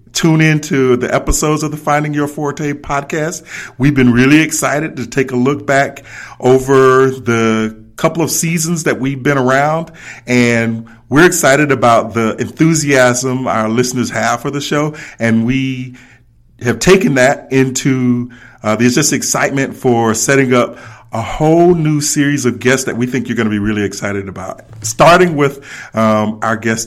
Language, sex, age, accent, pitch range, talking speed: English, male, 40-59, American, 115-145 Hz, 165 wpm